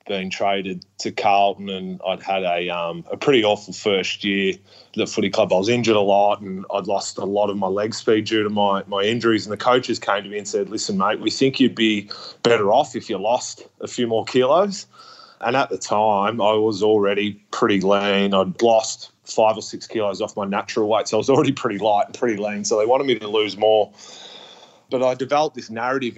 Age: 20-39